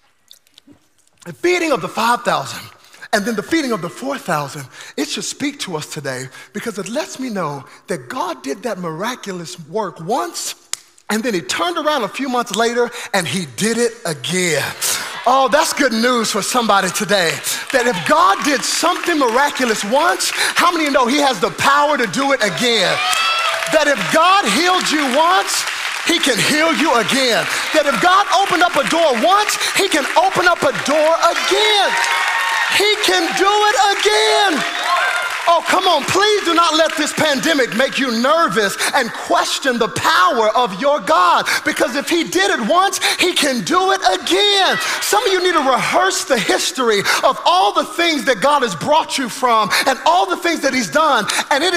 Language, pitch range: English, 225-335 Hz